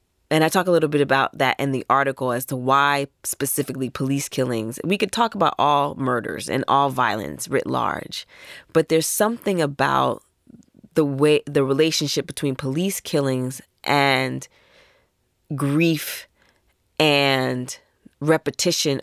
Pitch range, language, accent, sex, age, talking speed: 135-165 Hz, English, American, female, 20-39, 135 wpm